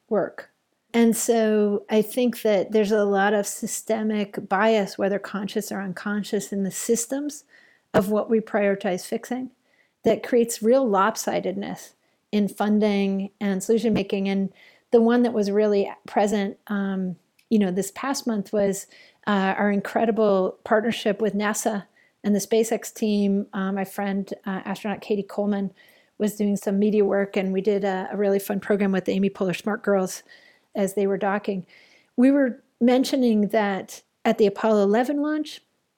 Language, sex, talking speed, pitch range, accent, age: English, female, 160 wpm, 195-225 Hz, American, 40-59